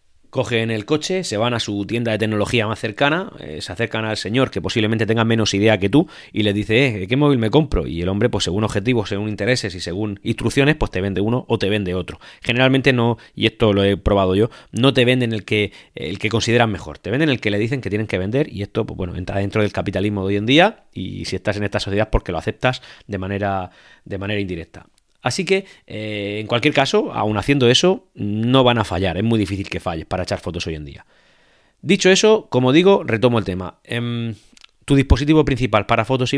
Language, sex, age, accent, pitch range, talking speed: Spanish, male, 30-49, Spanish, 100-130 Hz, 235 wpm